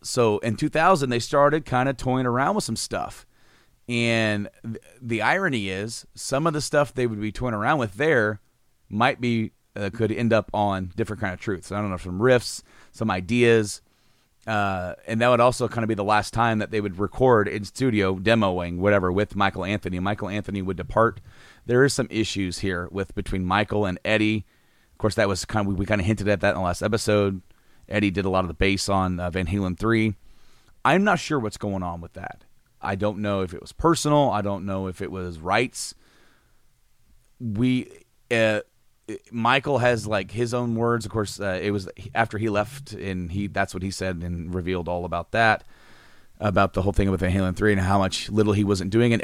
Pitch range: 95-120 Hz